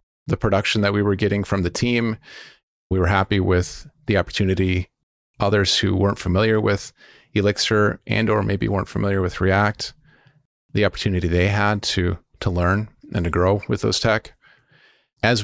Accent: American